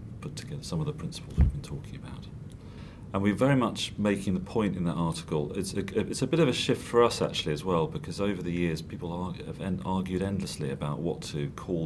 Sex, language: male, English